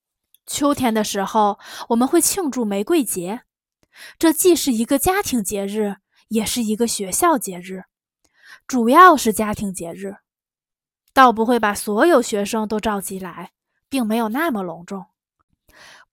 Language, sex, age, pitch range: Chinese, female, 20-39, 205-270 Hz